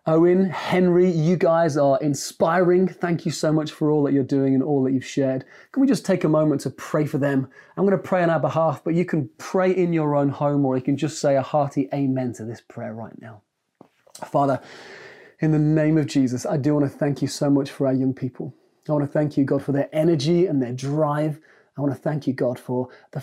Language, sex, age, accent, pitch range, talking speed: English, male, 30-49, British, 135-165 Hz, 240 wpm